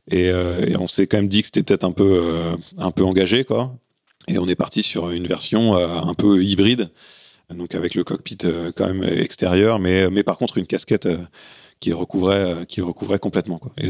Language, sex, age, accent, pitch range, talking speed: French, male, 30-49, French, 85-100 Hz, 230 wpm